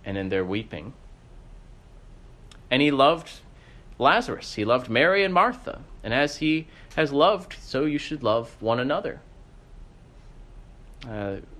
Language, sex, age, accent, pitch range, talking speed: English, male, 30-49, American, 105-145 Hz, 130 wpm